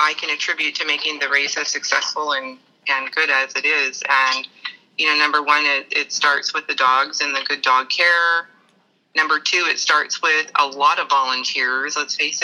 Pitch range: 140-190 Hz